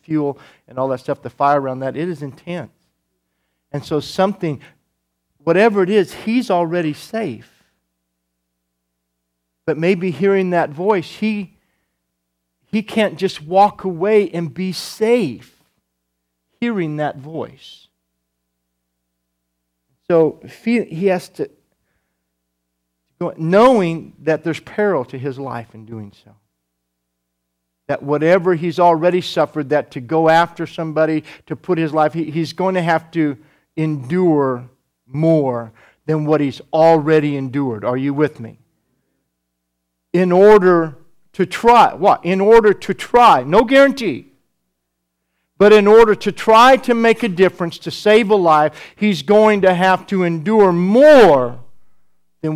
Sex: male